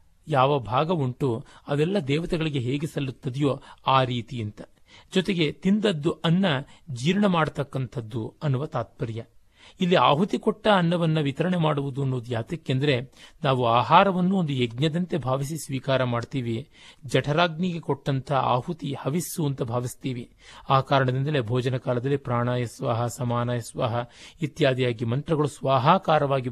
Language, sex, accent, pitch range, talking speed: Kannada, male, native, 120-150 Hz, 105 wpm